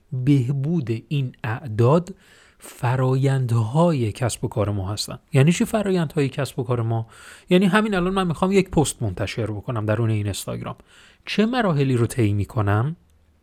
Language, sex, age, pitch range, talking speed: Persian, male, 30-49, 110-175 Hz, 145 wpm